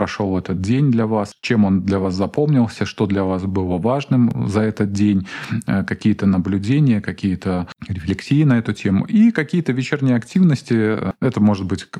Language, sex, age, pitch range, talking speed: Russian, male, 20-39, 100-130 Hz, 160 wpm